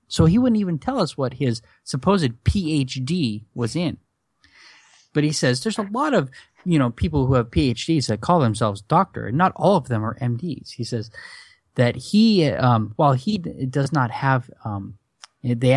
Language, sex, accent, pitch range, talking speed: English, male, American, 120-165 Hz, 185 wpm